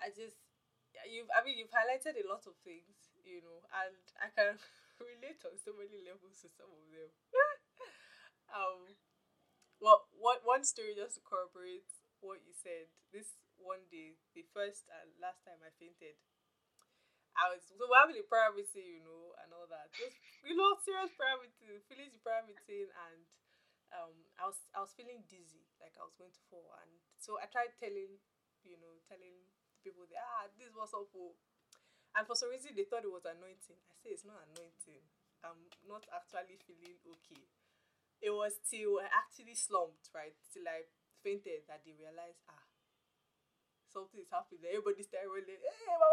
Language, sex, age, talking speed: English, female, 10-29, 170 wpm